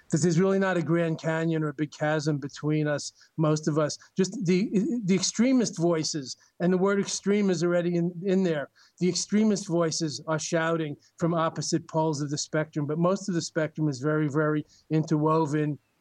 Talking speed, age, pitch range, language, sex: 185 wpm, 40-59, 150-170 Hz, English, male